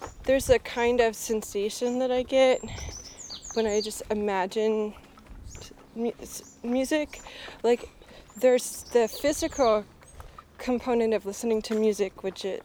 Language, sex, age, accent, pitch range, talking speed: English, female, 20-39, American, 200-240 Hz, 120 wpm